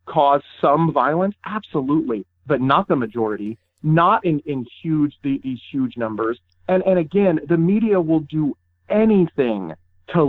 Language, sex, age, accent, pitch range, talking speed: English, male, 40-59, American, 130-185 Hz, 140 wpm